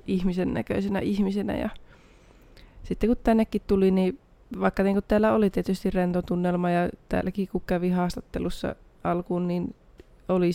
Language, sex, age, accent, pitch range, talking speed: Finnish, female, 20-39, native, 175-195 Hz, 135 wpm